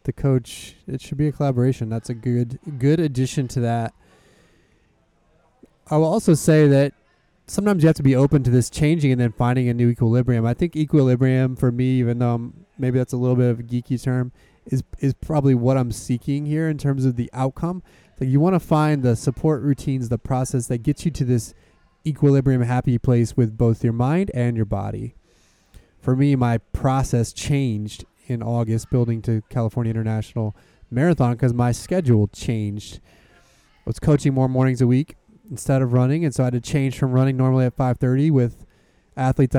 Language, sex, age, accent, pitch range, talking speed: English, male, 20-39, American, 120-140 Hz, 190 wpm